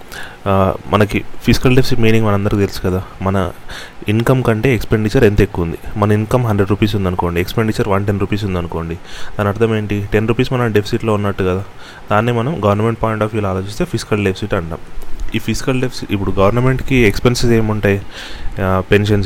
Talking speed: 160 wpm